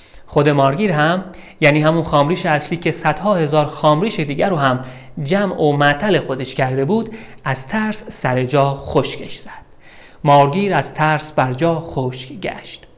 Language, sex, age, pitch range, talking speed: Persian, male, 40-59, 135-175 Hz, 150 wpm